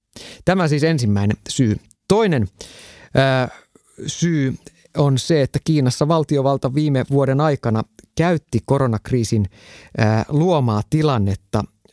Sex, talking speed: male, 90 wpm